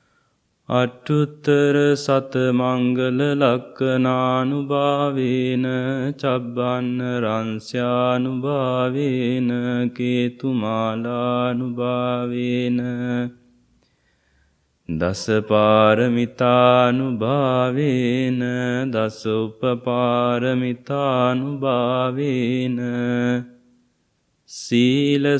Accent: Indian